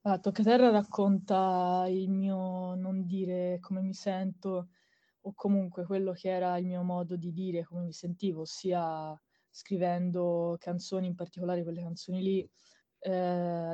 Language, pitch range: Italian, 175-190 Hz